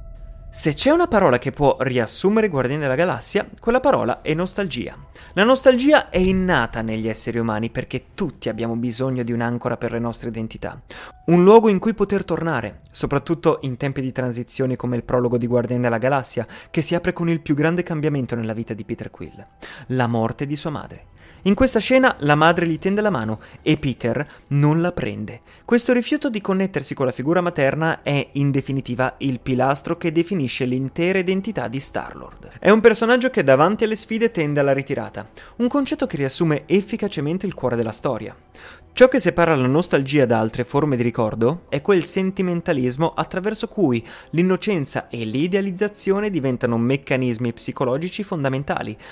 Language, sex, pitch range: Italian, male, 125-190 Hz